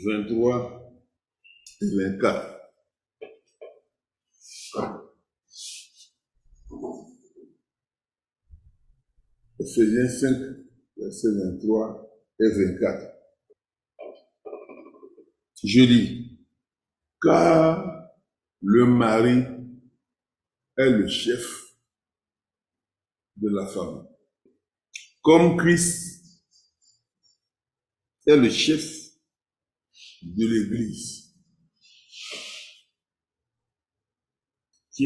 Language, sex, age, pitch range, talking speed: English, male, 60-79, 105-155 Hz, 50 wpm